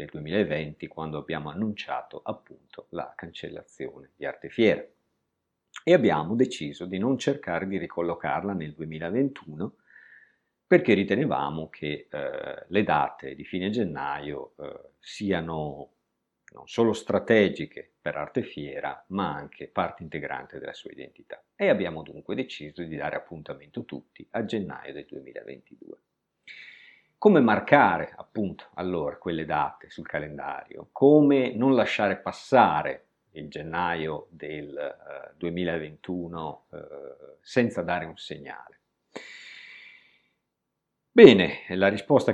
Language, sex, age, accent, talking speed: Italian, male, 50-69, native, 110 wpm